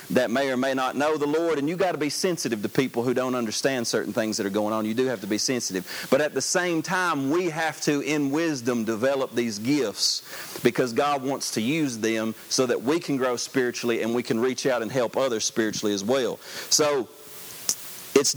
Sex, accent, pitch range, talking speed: male, American, 125-160 Hz, 225 wpm